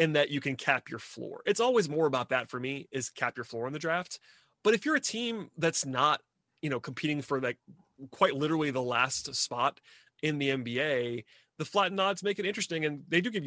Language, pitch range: English, 125-155 Hz